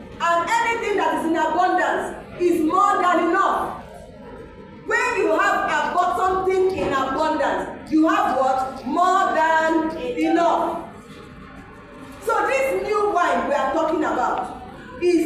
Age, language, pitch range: 40-59, English, 295-370 Hz